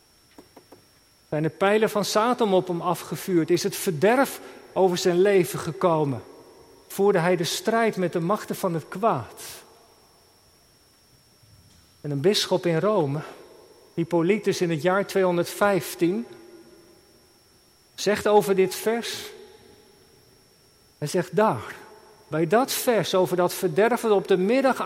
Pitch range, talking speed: 175-220 Hz, 125 wpm